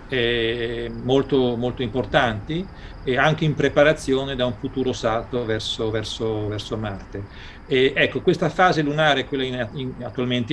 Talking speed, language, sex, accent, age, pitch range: 115 wpm, Italian, male, native, 40-59, 115-140 Hz